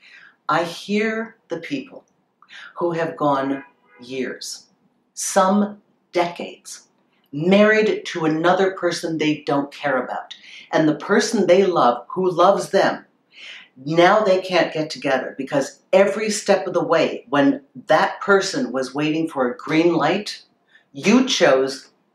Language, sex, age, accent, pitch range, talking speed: English, female, 50-69, American, 165-245 Hz, 130 wpm